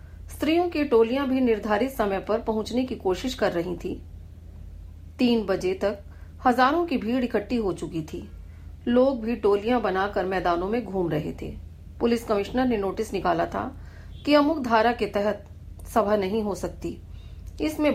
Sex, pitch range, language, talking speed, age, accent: female, 165-240 Hz, Hindi, 160 wpm, 40-59, native